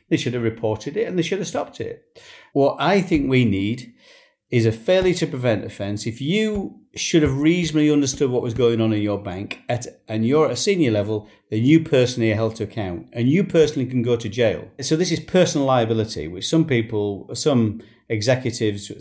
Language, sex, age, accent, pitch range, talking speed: English, male, 50-69, British, 110-145 Hz, 205 wpm